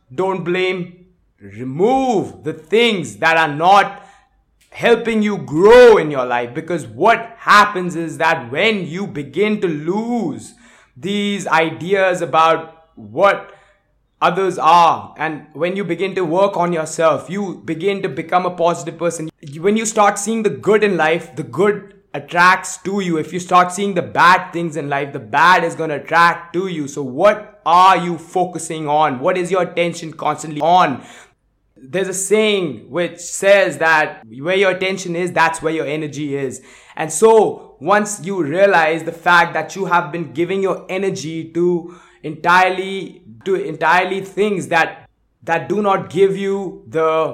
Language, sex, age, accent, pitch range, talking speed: English, male, 20-39, Indian, 160-195 Hz, 160 wpm